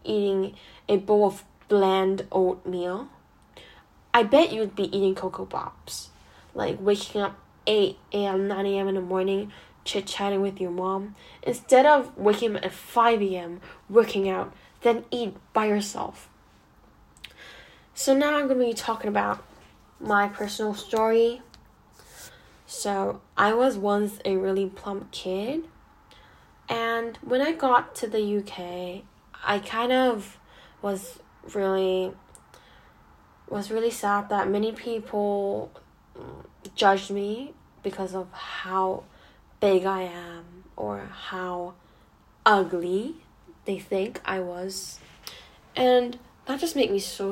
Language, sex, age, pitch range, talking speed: English, female, 10-29, 190-230 Hz, 125 wpm